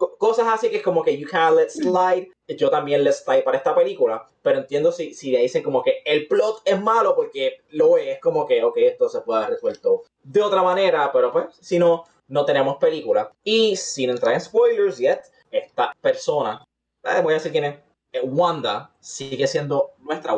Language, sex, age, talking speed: English, male, 20-39, 205 wpm